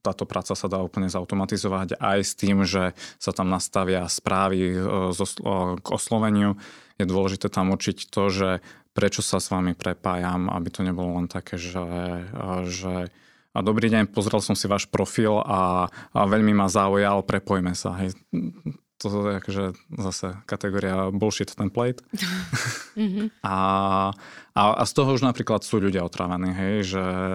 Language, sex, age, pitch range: Slovak, male, 20-39, 95-105 Hz